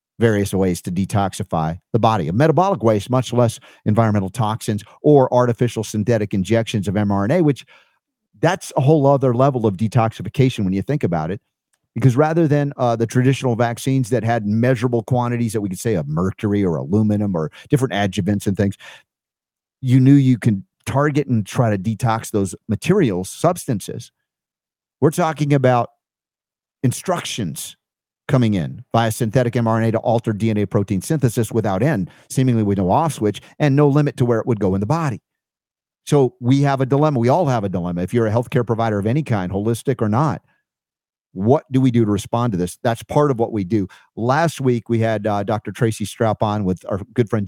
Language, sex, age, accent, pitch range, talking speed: English, male, 50-69, American, 105-130 Hz, 185 wpm